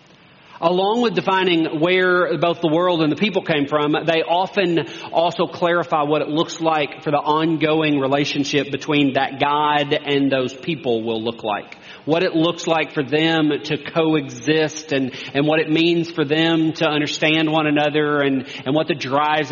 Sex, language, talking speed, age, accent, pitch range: male, English, 175 wpm, 40-59, American, 145-170 Hz